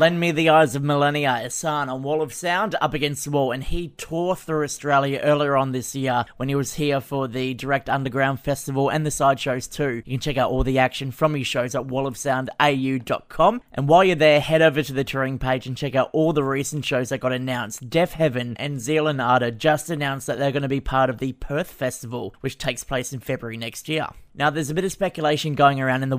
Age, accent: 20-39, Australian